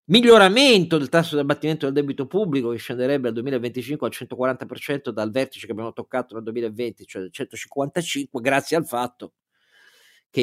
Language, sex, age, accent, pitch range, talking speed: Italian, male, 50-69, native, 115-140 Hz, 160 wpm